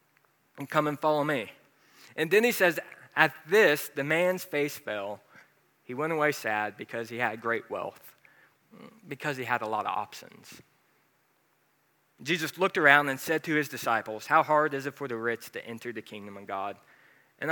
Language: English